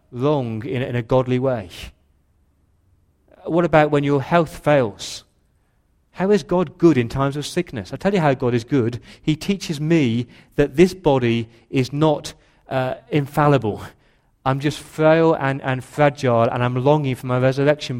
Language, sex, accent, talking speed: English, male, British, 165 wpm